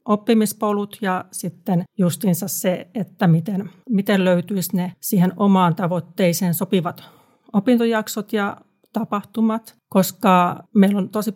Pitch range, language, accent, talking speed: 180-210 Hz, Finnish, native, 110 wpm